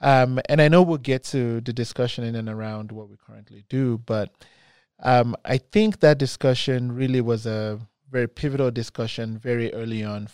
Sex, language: male, English